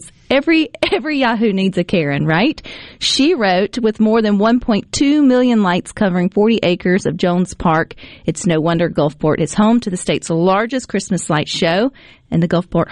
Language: English